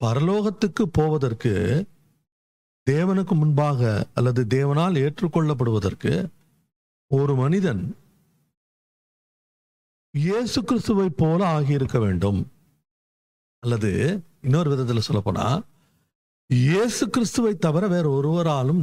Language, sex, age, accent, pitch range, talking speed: Tamil, male, 50-69, native, 120-165 Hz, 75 wpm